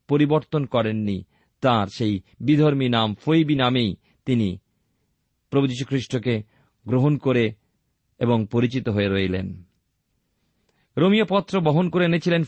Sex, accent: male, native